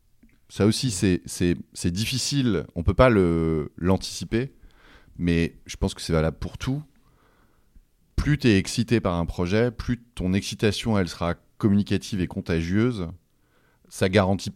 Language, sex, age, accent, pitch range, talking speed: French, male, 30-49, French, 85-105 Hz, 155 wpm